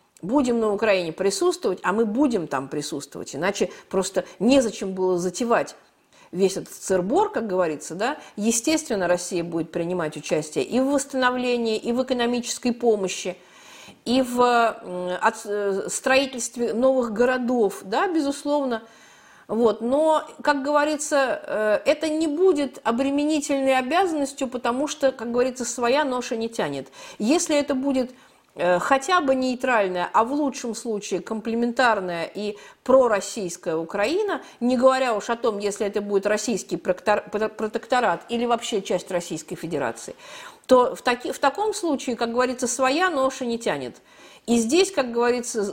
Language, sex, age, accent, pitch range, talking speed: Russian, female, 50-69, native, 210-275 Hz, 130 wpm